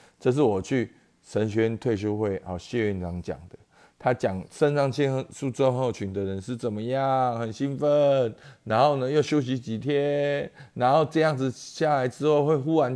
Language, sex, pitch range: Chinese, male, 105-145 Hz